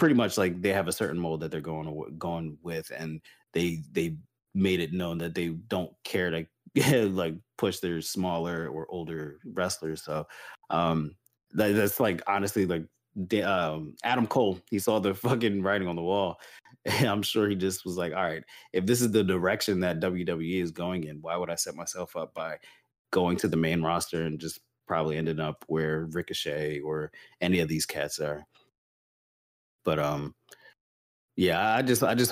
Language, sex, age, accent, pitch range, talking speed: English, male, 30-49, American, 80-100 Hz, 185 wpm